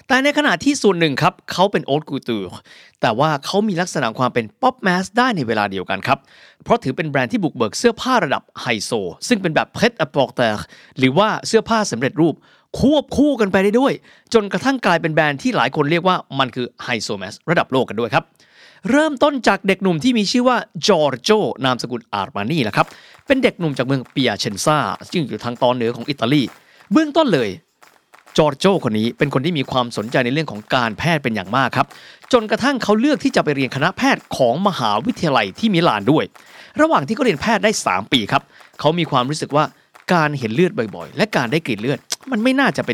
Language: Thai